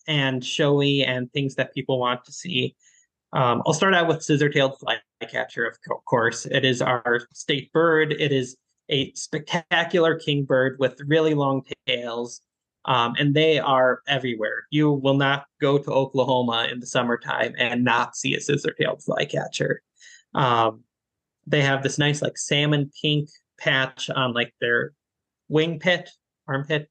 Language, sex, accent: English, male, American